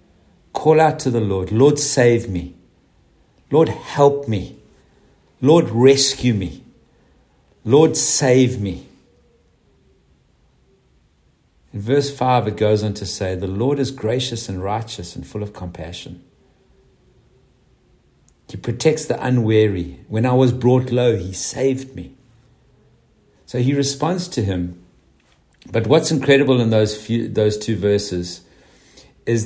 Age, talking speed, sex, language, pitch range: 60-79, 125 wpm, male, English, 105-140 Hz